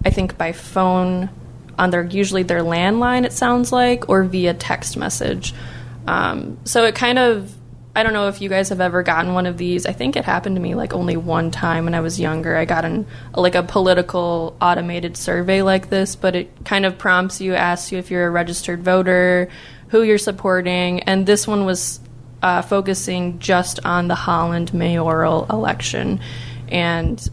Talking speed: 190 wpm